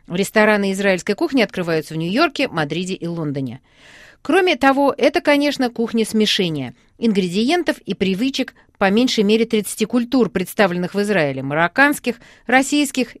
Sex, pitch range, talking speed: female, 195-270 Hz, 125 wpm